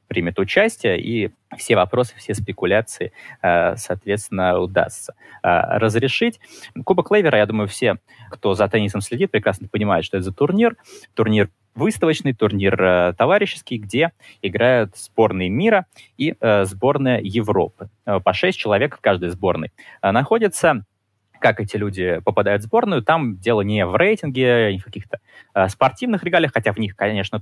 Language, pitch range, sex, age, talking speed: Russian, 95-125 Hz, male, 20-39, 140 wpm